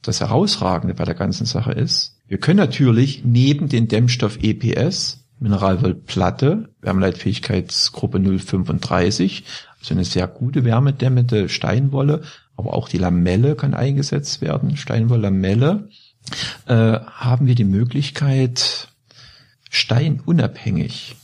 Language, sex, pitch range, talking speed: German, male, 115-140 Hz, 100 wpm